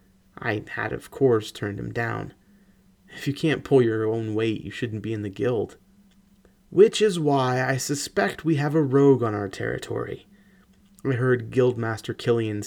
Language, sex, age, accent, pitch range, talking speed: English, male, 30-49, American, 105-135 Hz, 170 wpm